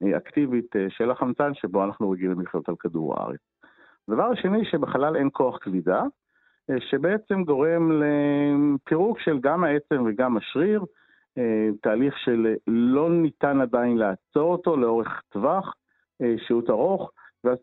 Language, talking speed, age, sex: Hebrew, 125 wpm, 50-69, male